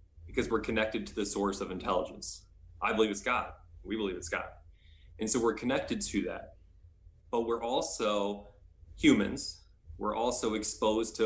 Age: 20-39